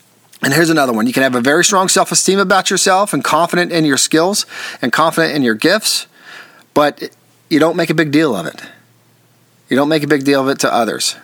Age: 30-49